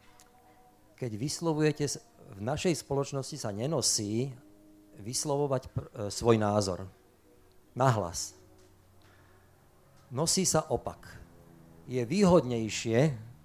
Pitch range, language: 105-140 Hz, Slovak